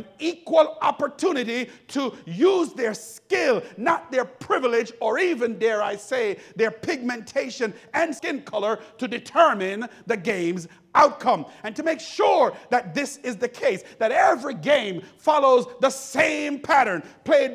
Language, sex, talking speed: English, male, 145 wpm